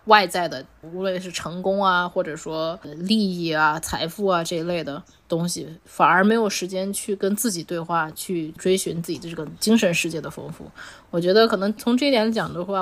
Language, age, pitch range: Chinese, 20-39, 175-225 Hz